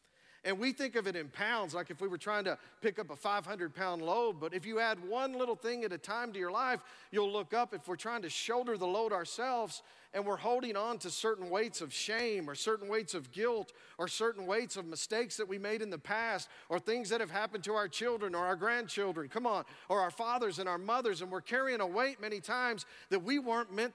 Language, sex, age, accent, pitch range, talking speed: English, male, 50-69, American, 175-230 Hz, 245 wpm